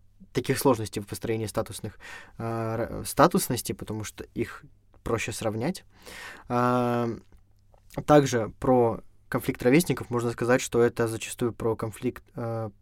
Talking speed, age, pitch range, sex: 115 wpm, 20-39, 105-125 Hz, male